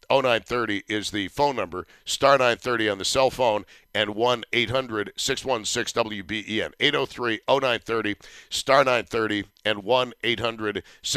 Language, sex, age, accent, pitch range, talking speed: English, male, 60-79, American, 105-140 Hz, 90 wpm